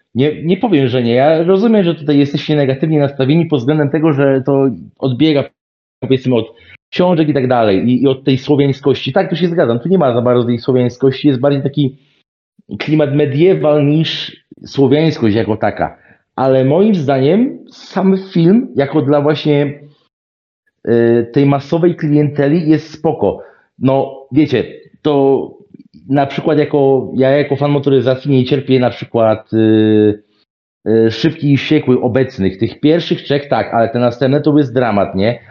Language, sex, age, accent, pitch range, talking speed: Polish, male, 40-59, native, 130-160 Hz, 155 wpm